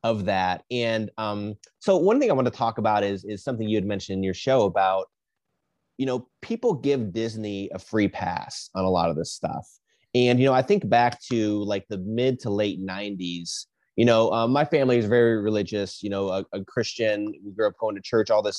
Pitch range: 100-125 Hz